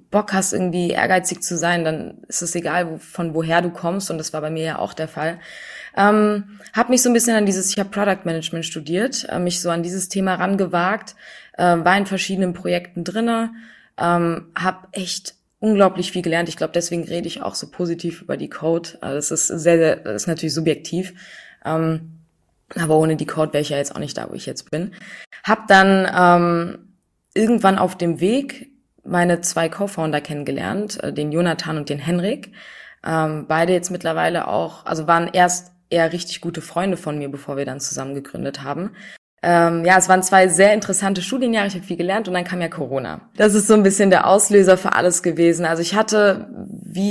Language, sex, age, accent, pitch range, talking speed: German, female, 20-39, German, 165-195 Hz, 205 wpm